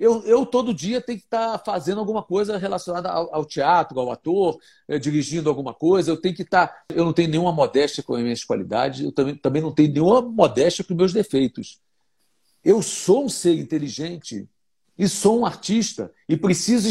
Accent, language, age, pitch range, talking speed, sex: Brazilian, Portuguese, 60-79, 150-195 Hz, 195 wpm, male